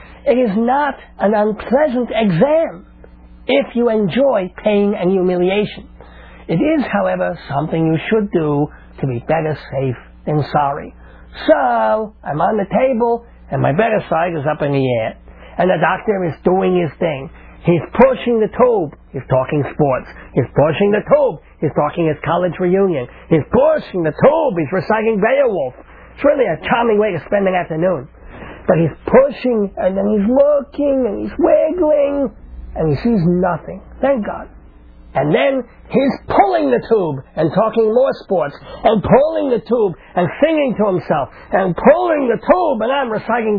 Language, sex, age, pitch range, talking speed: English, male, 60-79, 160-240 Hz, 165 wpm